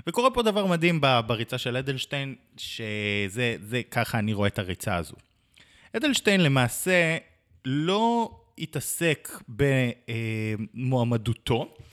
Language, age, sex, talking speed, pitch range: Hebrew, 20-39, male, 100 wpm, 115-160 Hz